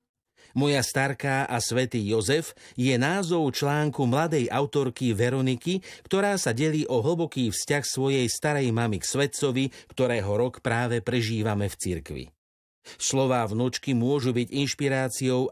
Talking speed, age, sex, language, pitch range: 130 wpm, 50-69, male, Slovak, 115-140 Hz